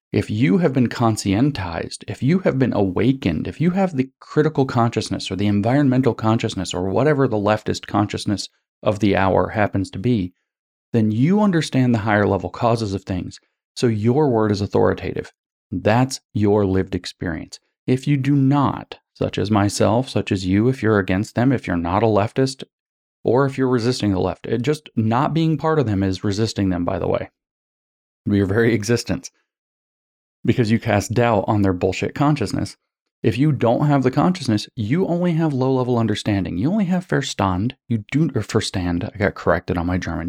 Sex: male